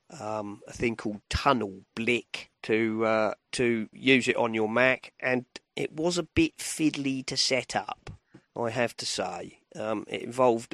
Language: English